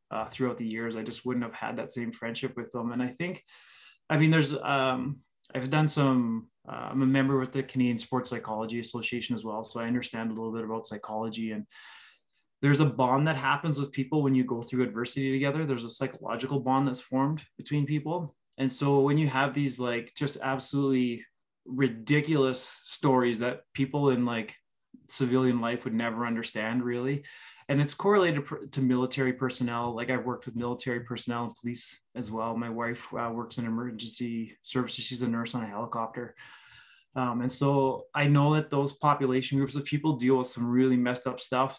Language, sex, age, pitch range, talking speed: English, male, 20-39, 120-135 Hz, 190 wpm